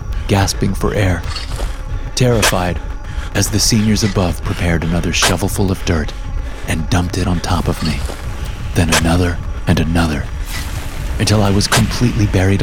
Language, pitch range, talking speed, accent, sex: English, 85-105 Hz, 145 wpm, American, male